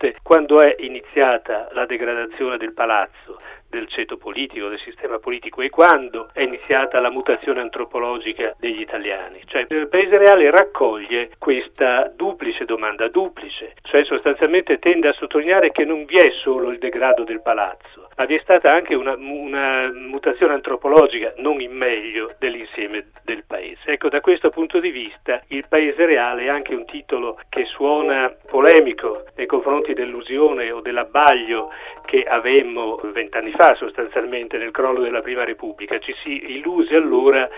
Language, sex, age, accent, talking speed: Italian, male, 40-59, native, 150 wpm